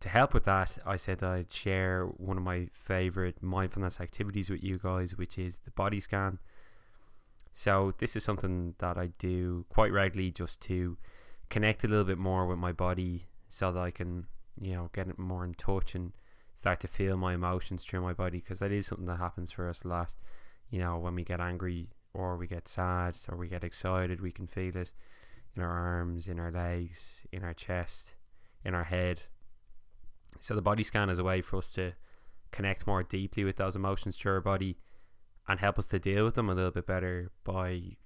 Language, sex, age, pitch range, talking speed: English, male, 10-29, 90-100 Hz, 205 wpm